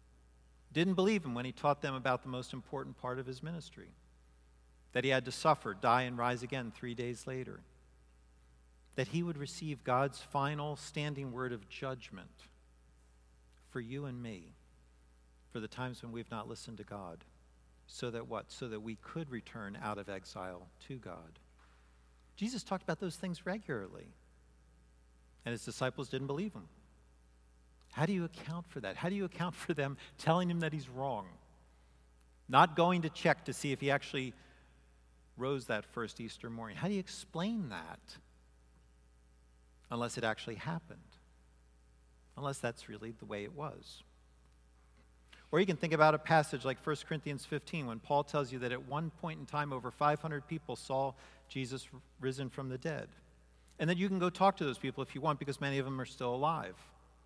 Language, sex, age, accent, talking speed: English, male, 50-69, American, 180 wpm